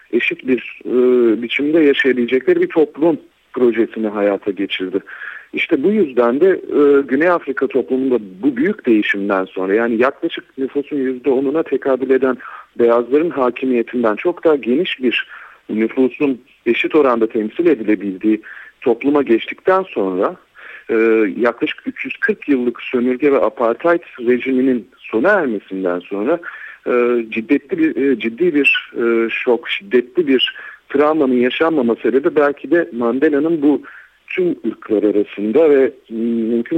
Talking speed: 115 wpm